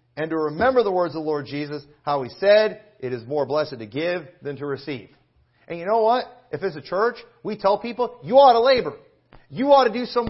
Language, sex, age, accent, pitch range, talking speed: English, male, 40-59, American, 145-215 Hz, 240 wpm